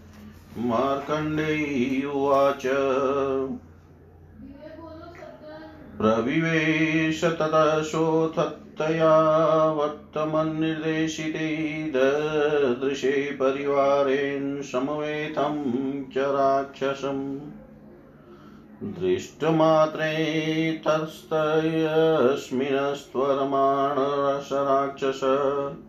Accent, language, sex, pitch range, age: native, Hindi, male, 135-155 Hz, 40-59